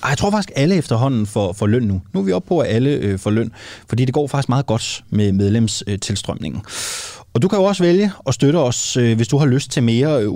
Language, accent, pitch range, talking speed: Danish, native, 105-145 Hz, 260 wpm